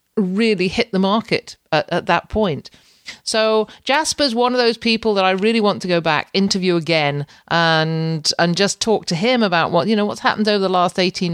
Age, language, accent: 40-59, English, British